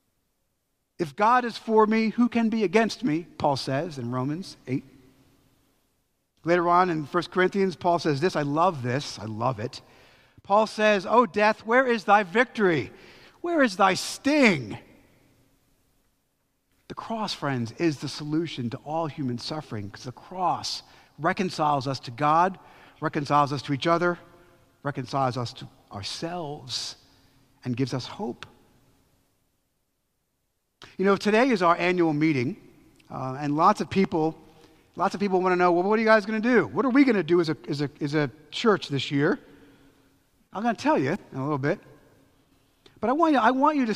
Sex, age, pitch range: male, 50-69, 135-205 Hz